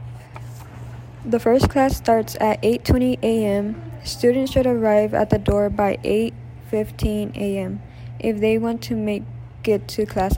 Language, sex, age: English, female, 10-29